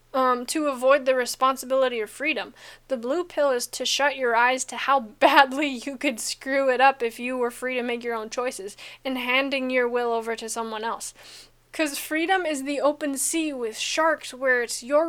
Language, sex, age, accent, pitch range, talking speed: English, female, 10-29, American, 250-290 Hz, 205 wpm